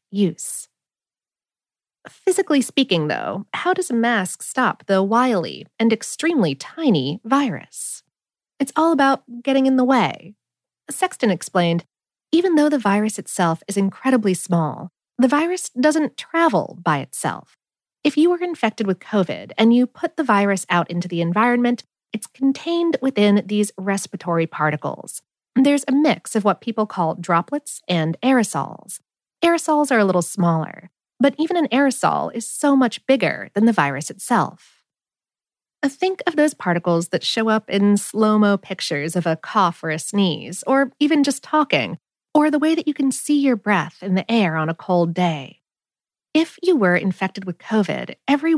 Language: English